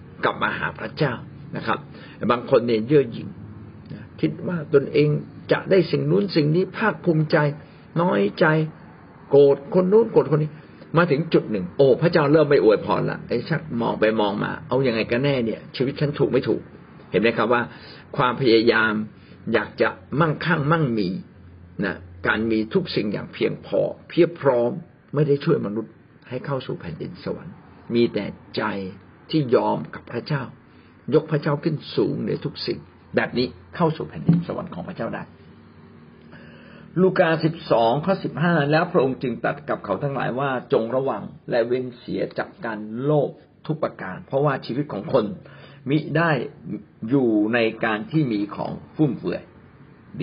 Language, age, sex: Thai, 60-79, male